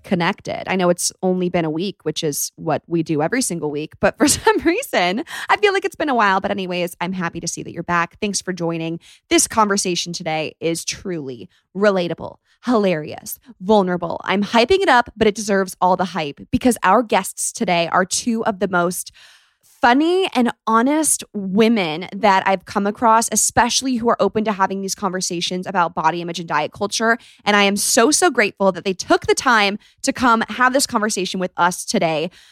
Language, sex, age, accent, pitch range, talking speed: English, female, 20-39, American, 180-235 Hz, 195 wpm